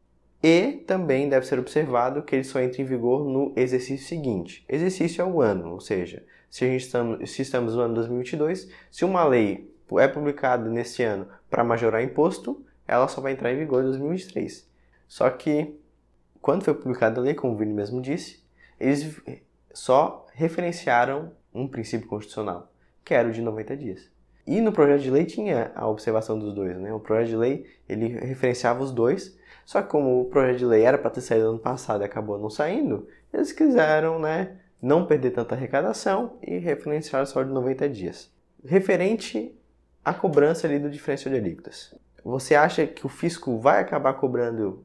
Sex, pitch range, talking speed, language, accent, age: male, 110-145 Hz, 180 wpm, Portuguese, Brazilian, 20-39